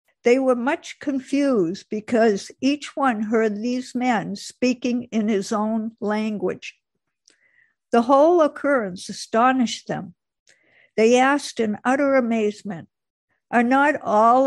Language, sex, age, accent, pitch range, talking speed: English, female, 60-79, American, 220-260 Hz, 115 wpm